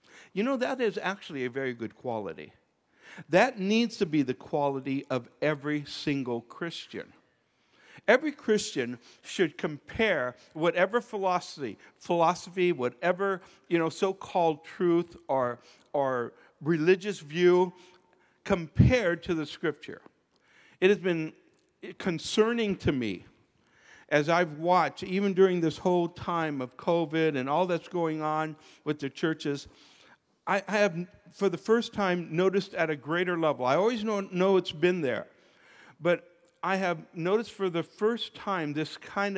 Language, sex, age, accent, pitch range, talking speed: English, male, 60-79, American, 145-185 Hz, 140 wpm